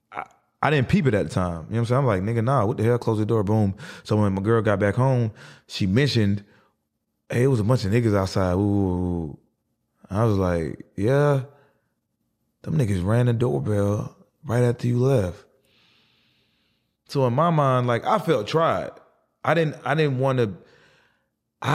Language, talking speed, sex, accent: English, 190 wpm, male, American